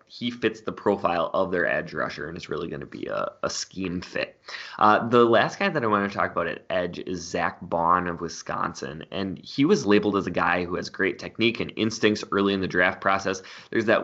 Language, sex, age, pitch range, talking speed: English, male, 20-39, 95-115 Hz, 235 wpm